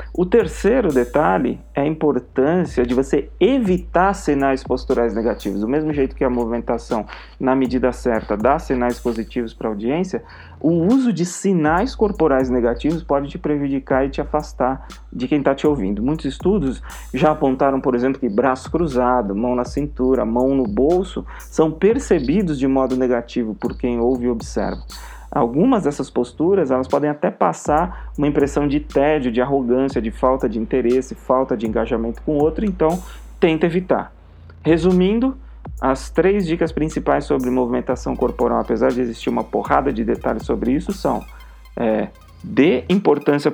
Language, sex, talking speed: Portuguese, male, 155 wpm